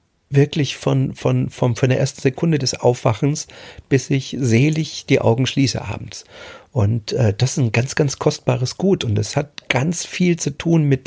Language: German